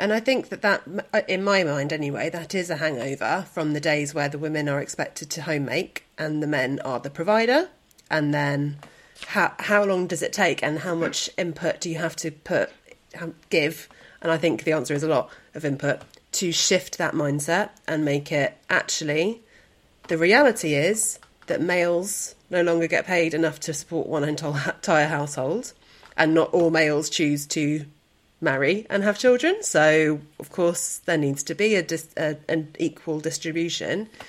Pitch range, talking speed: 150-175 Hz, 175 wpm